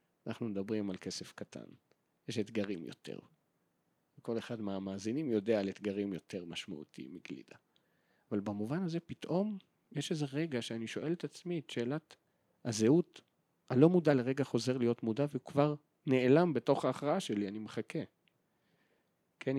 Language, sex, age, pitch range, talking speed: Hebrew, male, 40-59, 105-130 Hz, 140 wpm